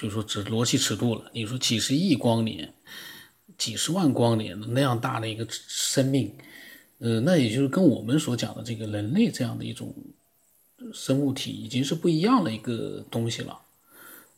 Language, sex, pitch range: Chinese, male, 115-135 Hz